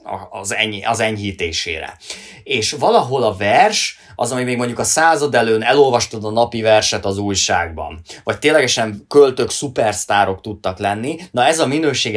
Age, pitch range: 20-39, 100-130 Hz